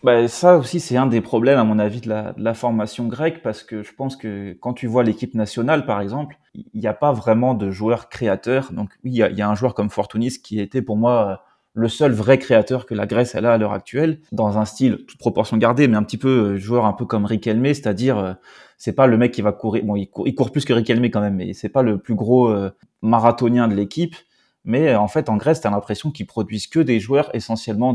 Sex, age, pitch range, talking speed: male, 20-39, 105-130 Hz, 260 wpm